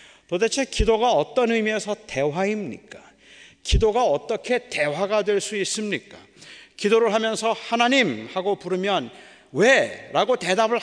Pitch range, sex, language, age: 200-245 Hz, male, Korean, 40-59